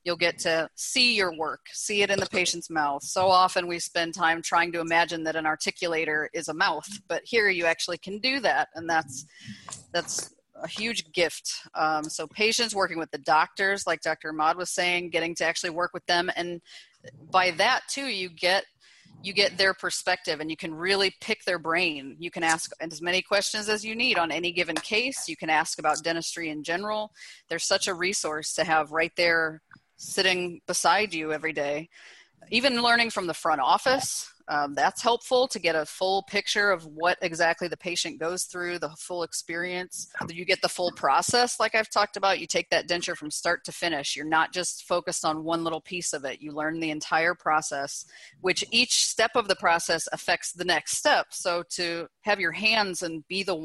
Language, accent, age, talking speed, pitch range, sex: English, American, 30-49, 200 wpm, 160-195 Hz, female